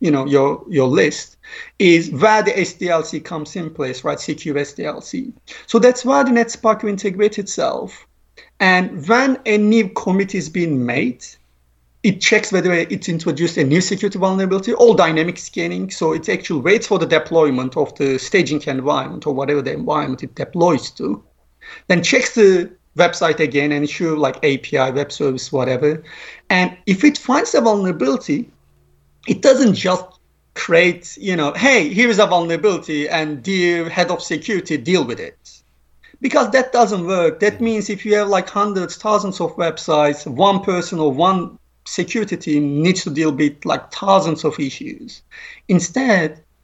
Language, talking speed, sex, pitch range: English, 160 wpm, male, 155-220 Hz